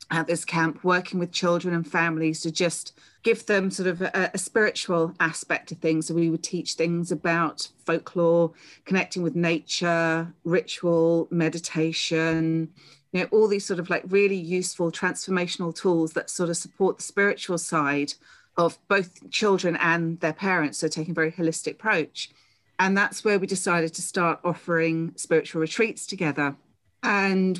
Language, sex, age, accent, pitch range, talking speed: English, female, 40-59, British, 160-180 Hz, 160 wpm